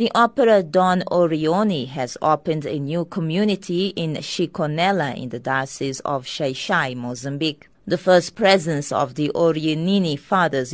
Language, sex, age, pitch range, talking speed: English, female, 30-49, 145-185 Hz, 135 wpm